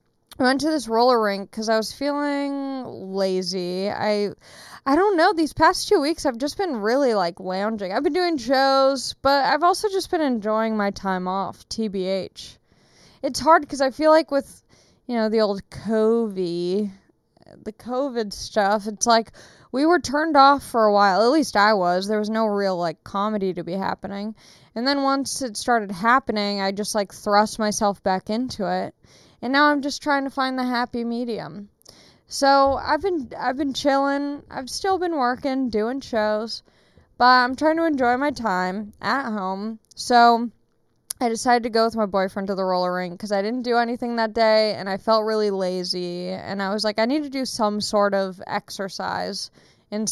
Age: 20-39